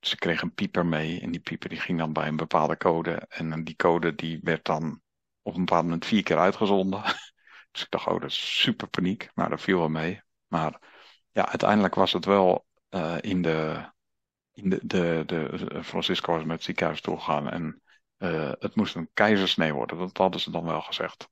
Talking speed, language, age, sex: 210 wpm, Dutch, 50-69, male